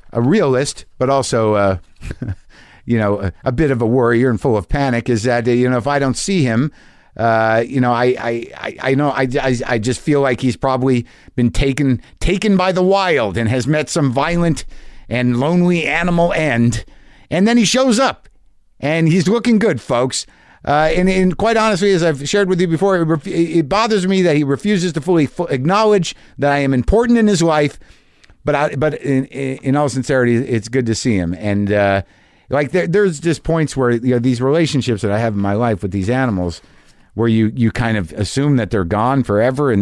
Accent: American